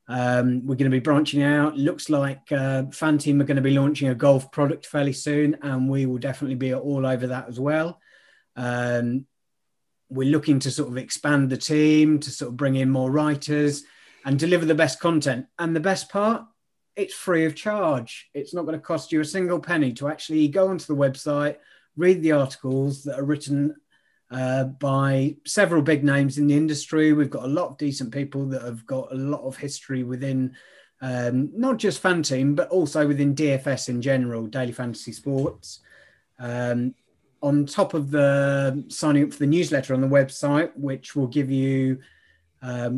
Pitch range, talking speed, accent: 130-150 Hz, 190 wpm, British